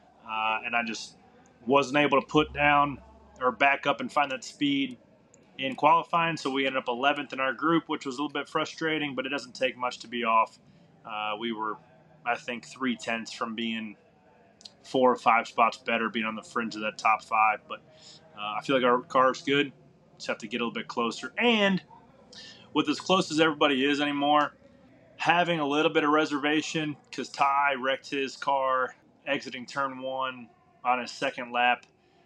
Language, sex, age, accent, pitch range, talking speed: English, male, 30-49, American, 115-145 Hz, 195 wpm